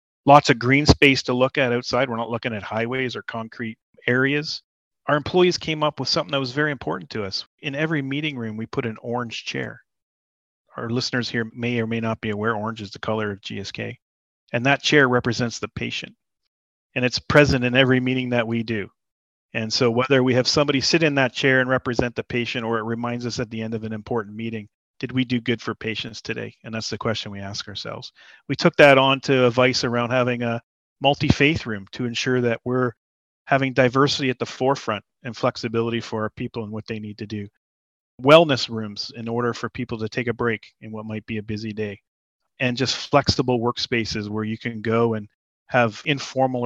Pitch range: 110-130 Hz